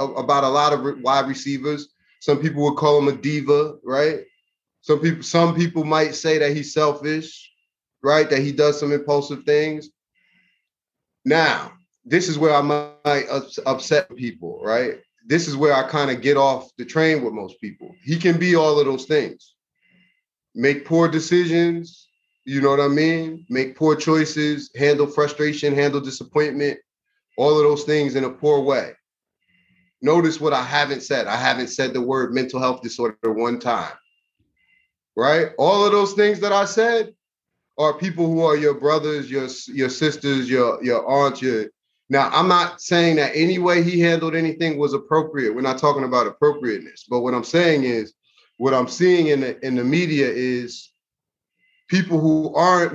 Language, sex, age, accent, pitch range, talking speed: English, male, 30-49, American, 135-160 Hz, 170 wpm